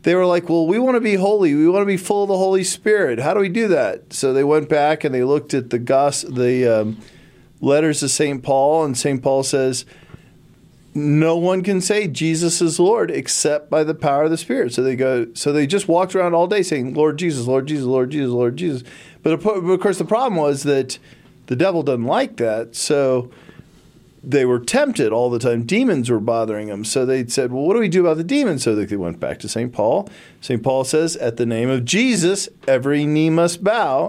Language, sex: English, male